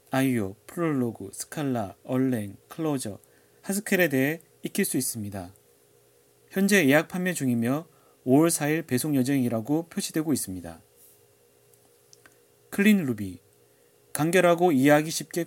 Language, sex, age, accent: Korean, male, 30-49, native